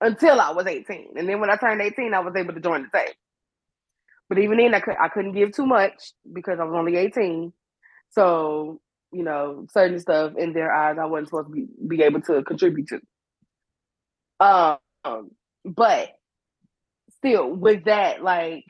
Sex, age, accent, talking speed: female, 20-39, American, 175 wpm